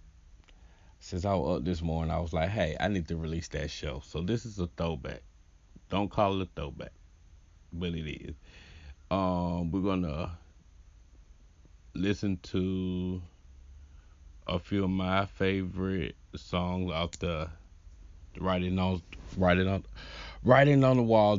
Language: English